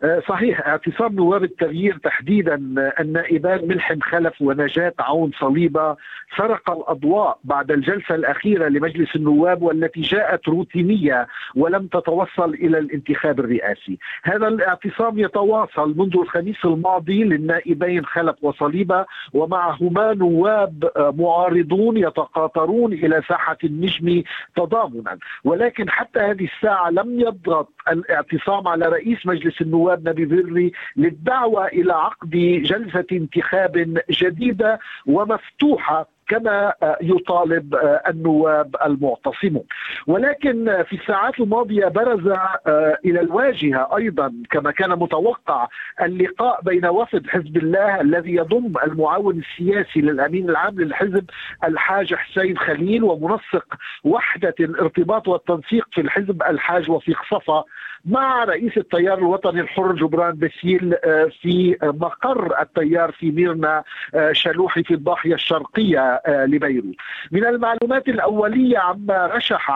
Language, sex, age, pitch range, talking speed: Arabic, male, 50-69, 160-200 Hz, 105 wpm